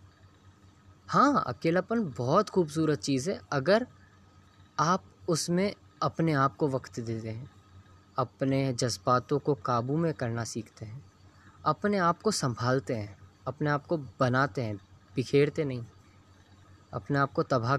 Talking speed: 130 wpm